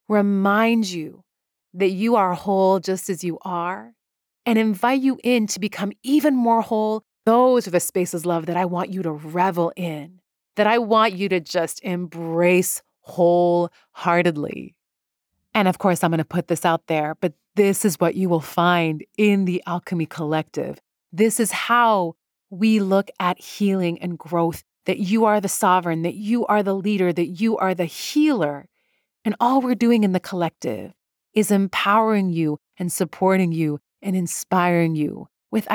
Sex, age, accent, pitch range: female, 30-49, American, 170-215 Hz